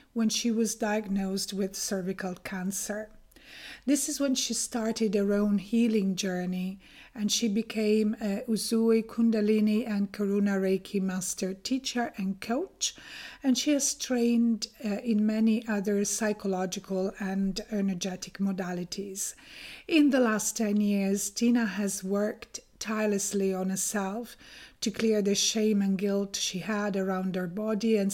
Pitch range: 195-235 Hz